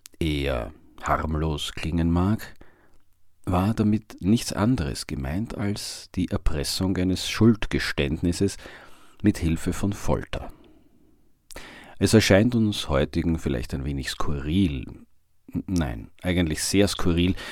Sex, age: male, 40-59